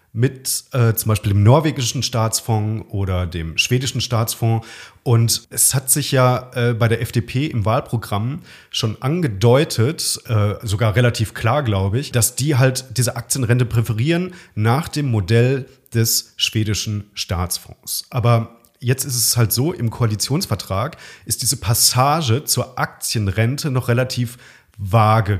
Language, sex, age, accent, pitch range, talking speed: German, male, 40-59, German, 110-135 Hz, 135 wpm